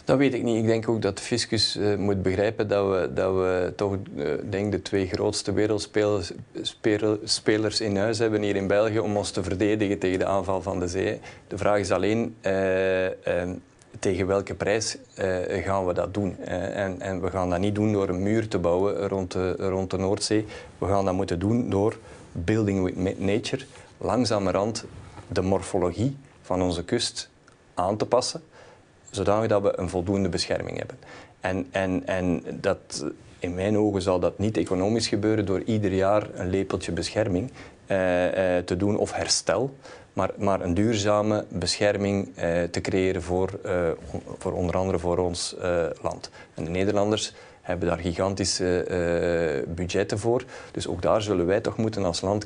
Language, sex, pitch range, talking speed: Dutch, male, 95-105 Hz, 170 wpm